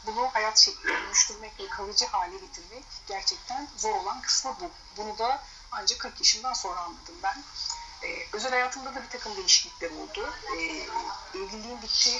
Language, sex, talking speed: Turkish, female, 155 wpm